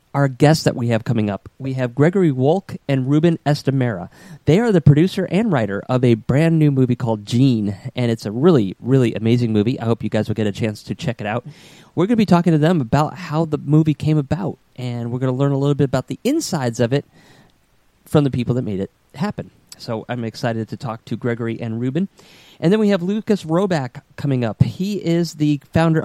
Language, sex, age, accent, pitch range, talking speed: English, male, 30-49, American, 120-160 Hz, 230 wpm